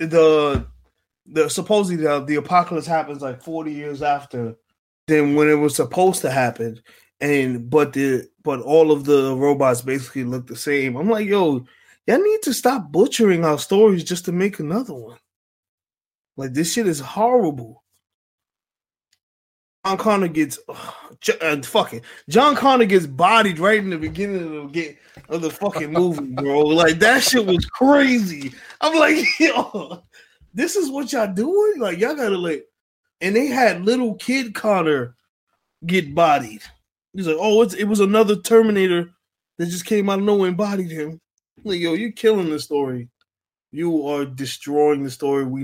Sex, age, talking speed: male, 20-39, 160 wpm